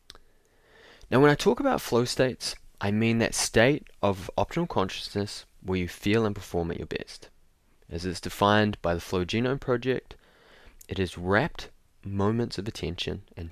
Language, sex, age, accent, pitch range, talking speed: English, male, 20-39, Australian, 85-115 Hz, 165 wpm